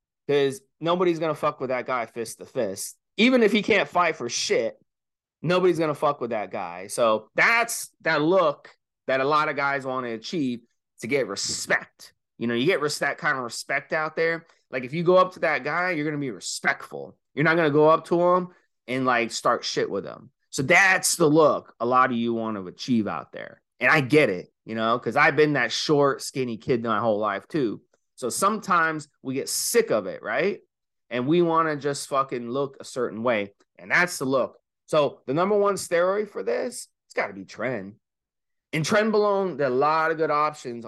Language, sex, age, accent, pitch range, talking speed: English, male, 30-49, American, 125-175 Hz, 220 wpm